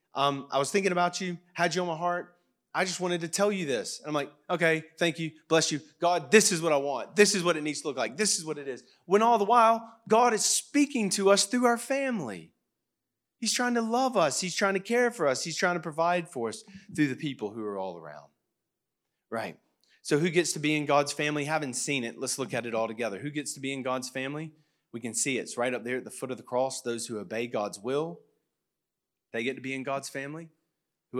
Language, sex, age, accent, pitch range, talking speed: English, male, 30-49, American, 125-170 Hz, 255 wpm